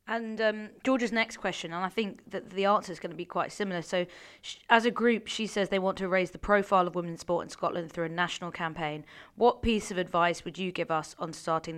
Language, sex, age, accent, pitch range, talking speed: English, female, 20-39, British, 170-200 Hz, 250 wpm